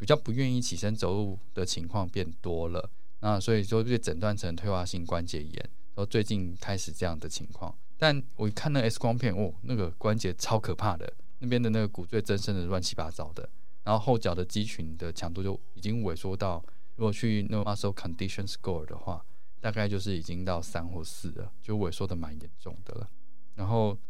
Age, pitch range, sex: 20-39, 90-110 Hz, male